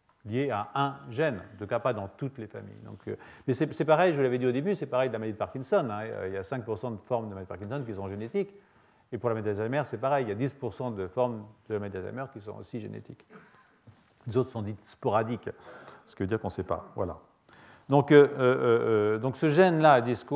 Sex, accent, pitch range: male, French, 105-140 Hz